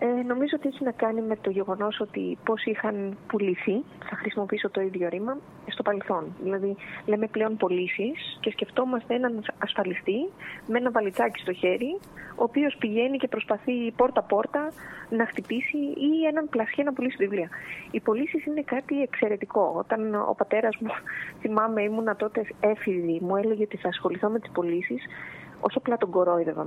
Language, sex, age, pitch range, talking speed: Greek, female, 20-39, 195-255 Hz, 160 wpm